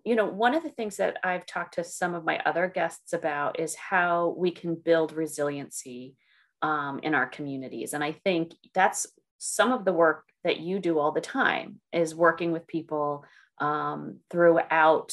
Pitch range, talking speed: 160-190 Hz, 185 wpm